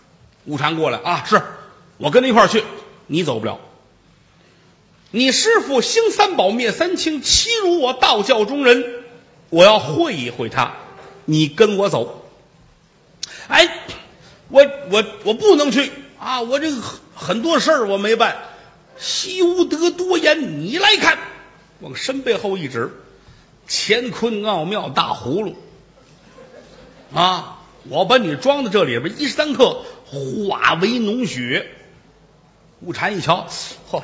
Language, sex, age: Chinese, male, 50-69